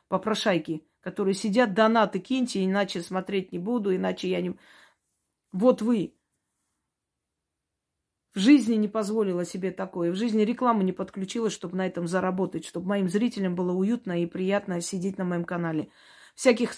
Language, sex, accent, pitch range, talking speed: Russian, female, native, 180-220 Hz, 145 wpm